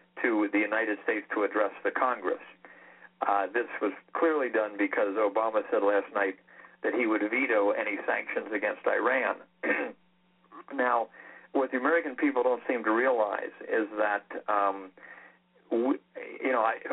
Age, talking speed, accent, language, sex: 60-79, 145 wpm, American, English, male